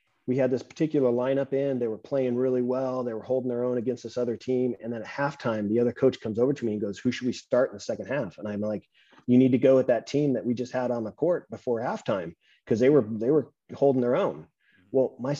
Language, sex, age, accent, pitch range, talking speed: English, male, 30-49, American, 115-140 Hz, 275 wpm